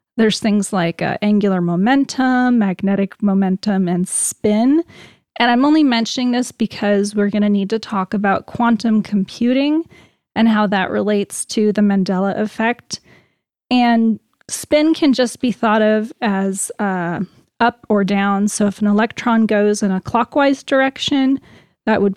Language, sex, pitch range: English, female, 200-235 Hz